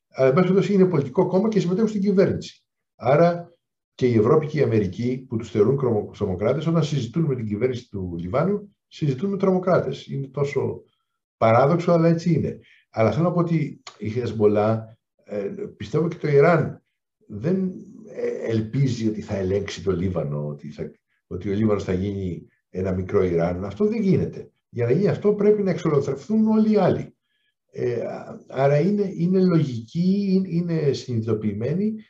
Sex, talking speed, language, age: male, 155 wpm, Greek, 60-79